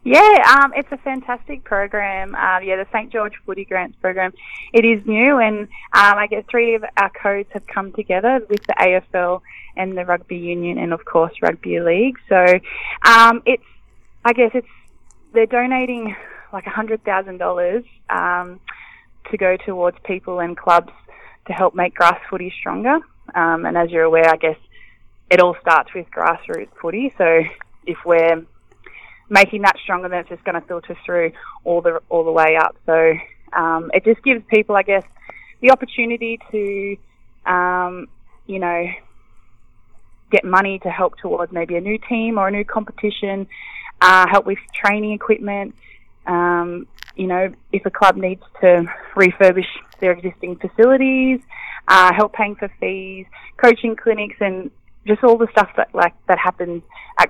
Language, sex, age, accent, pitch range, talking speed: English, female, 10-29, Australian, 175-220 Hz, 160 wpm